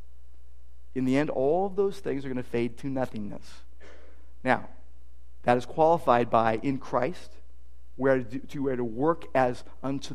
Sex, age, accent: male, 50-69, American